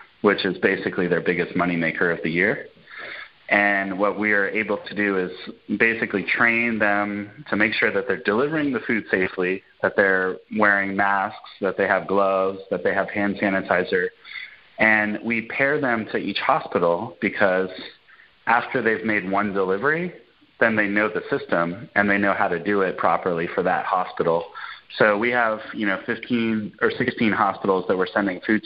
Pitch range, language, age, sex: 95-115 Hz, English, 30-49, male